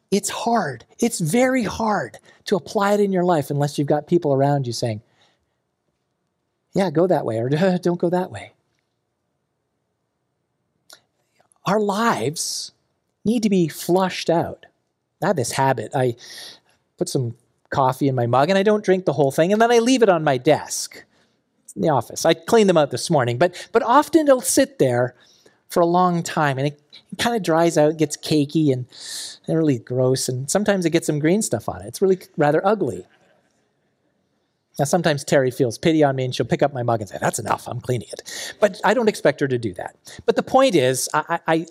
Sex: male